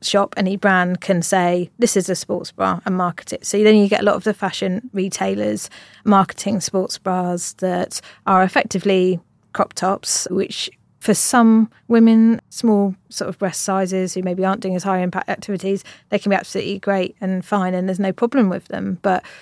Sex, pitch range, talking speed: female, 180-200 Hz, 190 wpm